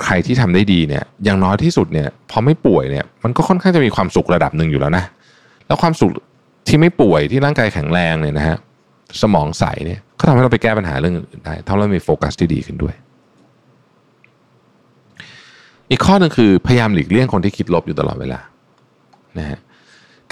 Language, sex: Thai, male